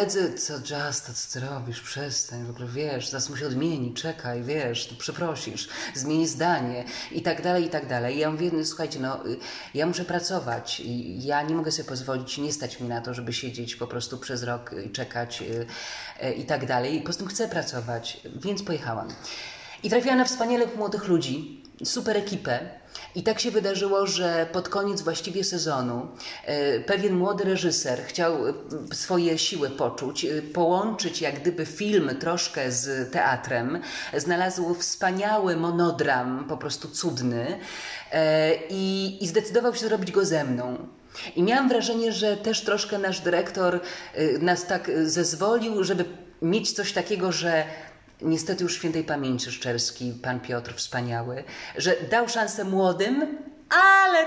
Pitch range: 130-195 Hz